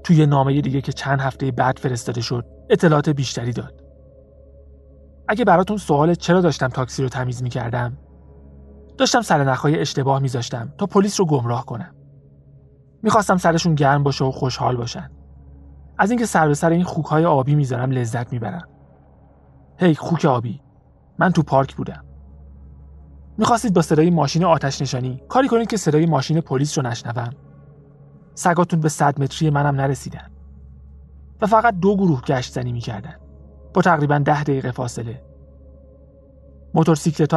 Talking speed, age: 140 wpm, 30-49